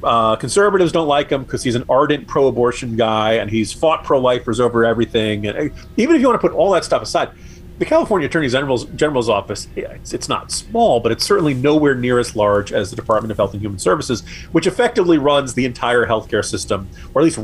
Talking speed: 215 wpm